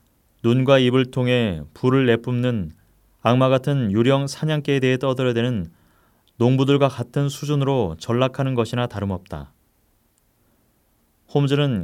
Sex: male